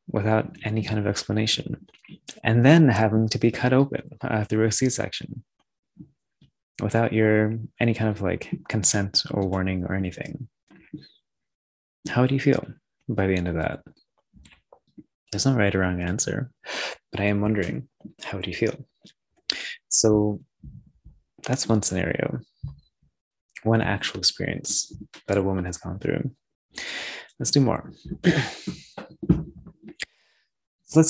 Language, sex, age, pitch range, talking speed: English, male, 20-39, 95-115 Hz, 130 wpm